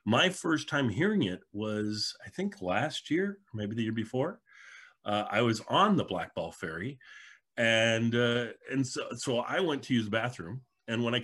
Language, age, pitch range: English, 40-59, 100-135 Hz